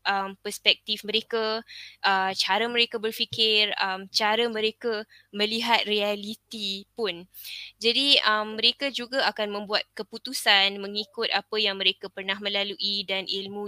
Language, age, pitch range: Malay, 10-29, 200-225 Hz